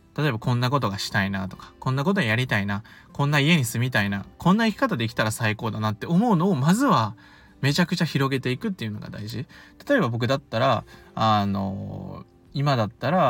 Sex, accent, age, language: male, native, 20-39, Japanese